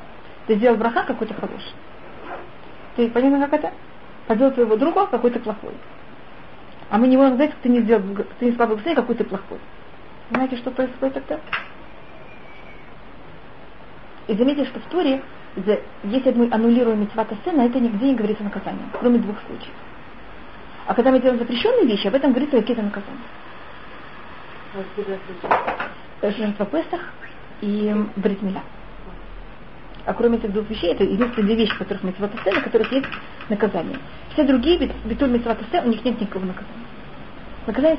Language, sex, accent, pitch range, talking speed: Russian, female, native, 210-260 Hz, 155 wpm